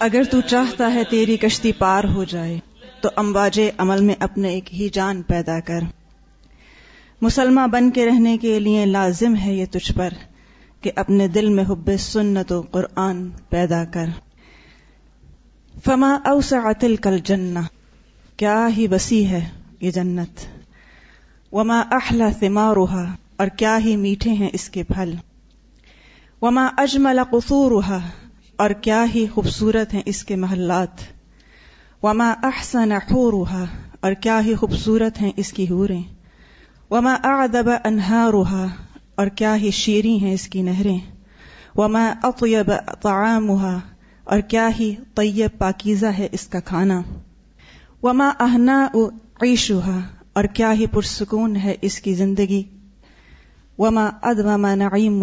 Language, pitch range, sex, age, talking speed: Urdu, 190-225 Hz, female, 30-49, 135 wpm